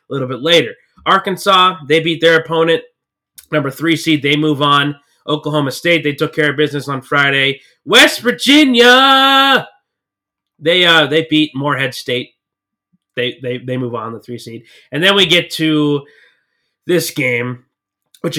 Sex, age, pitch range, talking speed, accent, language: male, 20-39, 125-160 Hz, 155 wpm, American, English